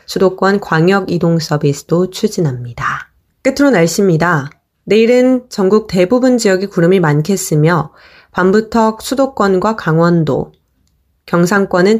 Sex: female